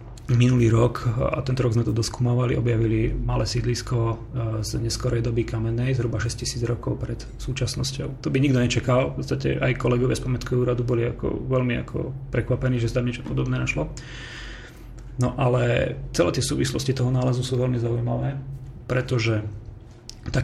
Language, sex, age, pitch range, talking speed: Slovak, male, 30-49, 115-130 Hz, 160 wpm